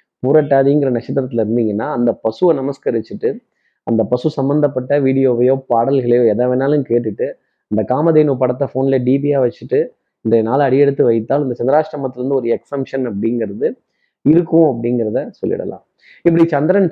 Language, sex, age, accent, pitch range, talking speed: Tamil, male, 20-39, native, 130-165 Hz, 125 wpm